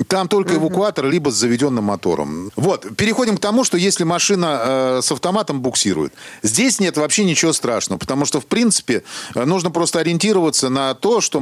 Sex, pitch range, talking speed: male, 135-195 Hz, 175 wpm